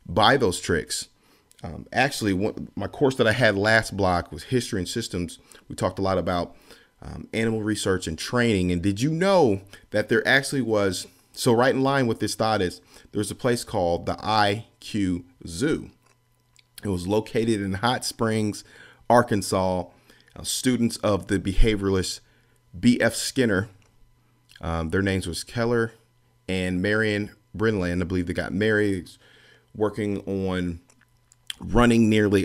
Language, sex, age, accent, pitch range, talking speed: English, male, 40-59, American, 95-115 Hz, 150 wpm